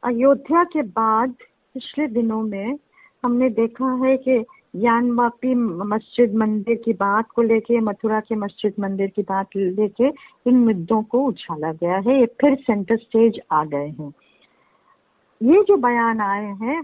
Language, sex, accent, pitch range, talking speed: Hindi, female, native, 220-275 Hz, 155 wpm